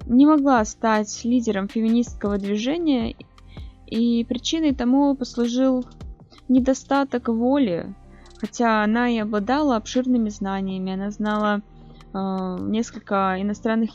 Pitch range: 210-255 Hz